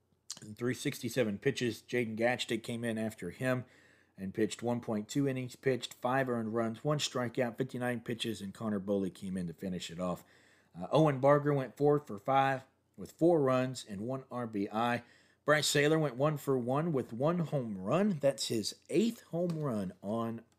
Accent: American